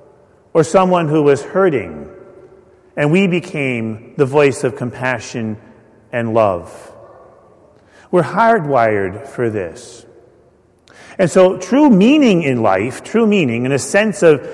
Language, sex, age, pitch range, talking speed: English, male, 40-59, 135-185 Hz, 125 wpm